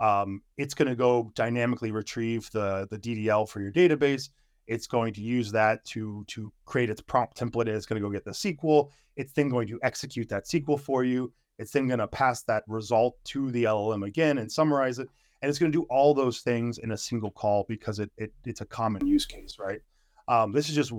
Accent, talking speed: American, 230 wpm